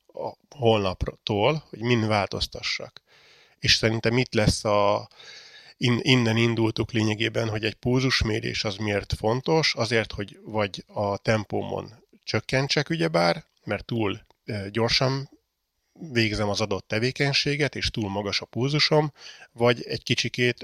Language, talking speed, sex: Hungarian, 120 wpm, male